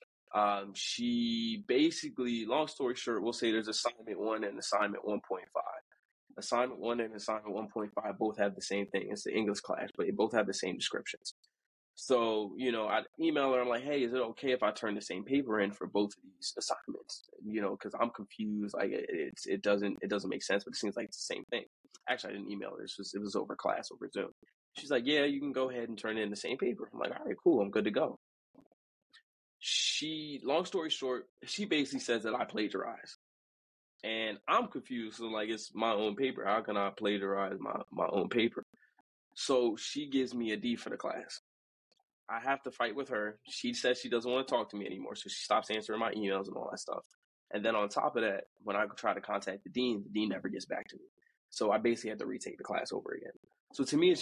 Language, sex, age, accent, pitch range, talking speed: English, male, 20-39, American, 105-135 Hz, 230 wpm